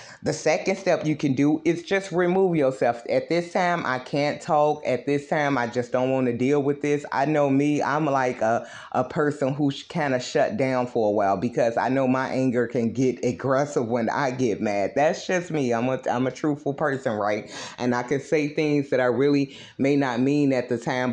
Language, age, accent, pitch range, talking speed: English, 30-49, American, 125-155 Hz, 225 wpm